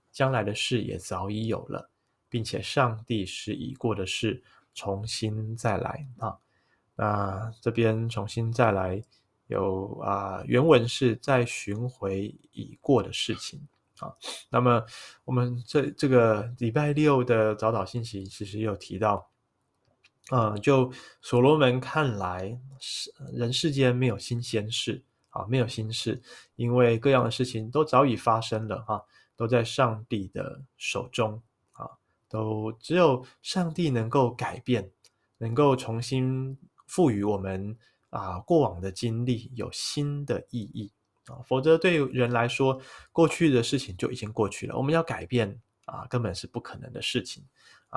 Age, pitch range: 20-39, 110-130 Hz